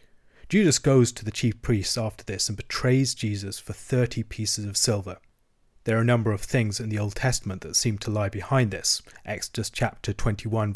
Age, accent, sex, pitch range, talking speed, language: 30-49, British, male, 105-120 Hz, 195 wpm, English